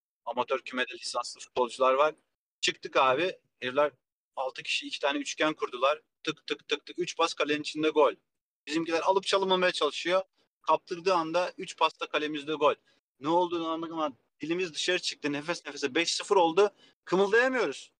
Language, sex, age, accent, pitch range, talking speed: Turkish, male, 40-59, native, 135-185 Hz, 150 wpm